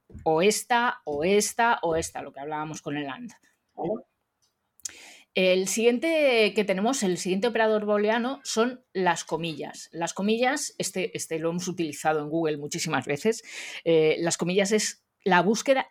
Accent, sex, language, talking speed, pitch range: Spanish, female, Spanish, 150 wpm, 165-235 Hz